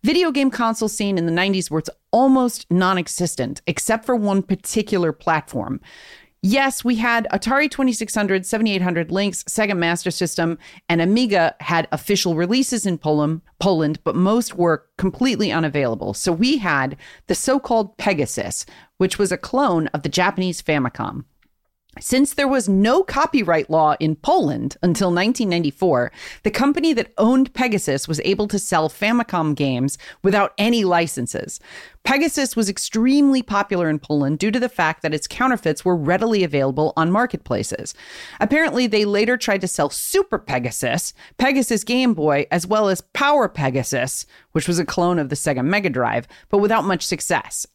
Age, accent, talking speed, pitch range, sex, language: 40-59, American, 155 wpm, 160-230 Hz, female, English